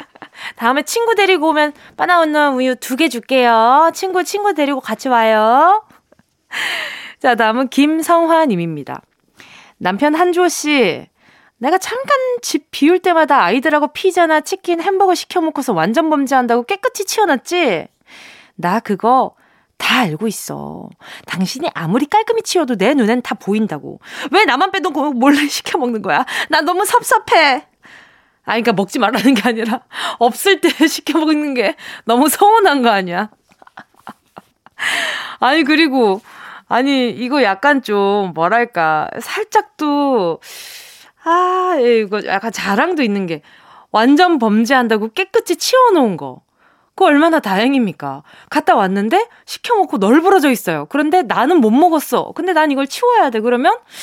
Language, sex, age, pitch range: Korean, female, 20-39, 230-355 Hz